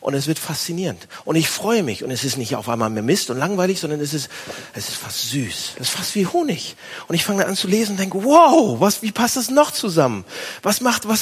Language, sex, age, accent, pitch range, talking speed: German, male, 40-59, German, 145-215 Hz, 250 wpm